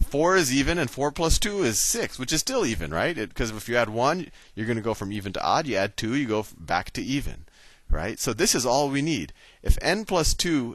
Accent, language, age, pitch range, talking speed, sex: American, English, 30-49, 85-135 Hz, 255 wpm, male